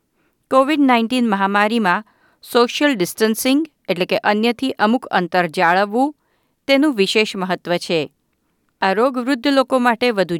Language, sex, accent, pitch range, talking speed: Gujarati, female, native, 185-245 Hz, 115 wpm